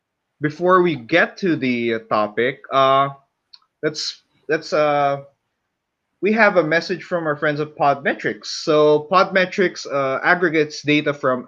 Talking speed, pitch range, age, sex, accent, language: 130 wpm, 135-175 Hz, 20-39, male, Filipino, English